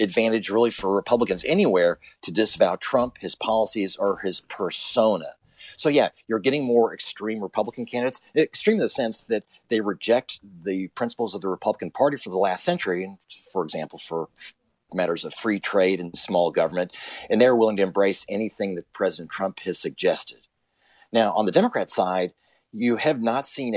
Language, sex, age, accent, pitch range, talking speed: English, male, 40-59, American, 95-140 Hz, 170 wpm